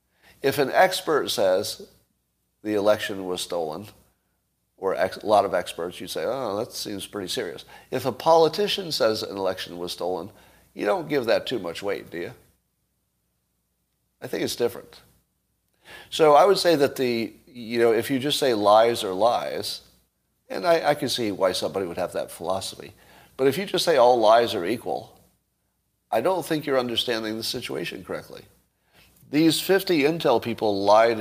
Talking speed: 175 wpm